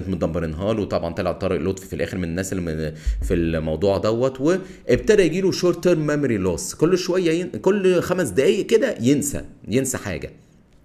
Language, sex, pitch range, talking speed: Arabic, male, 100-140 Hz, 170 wpm